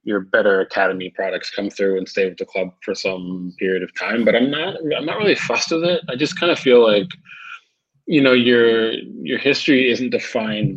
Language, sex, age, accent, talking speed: English, male, 20-39, American, 210 wpm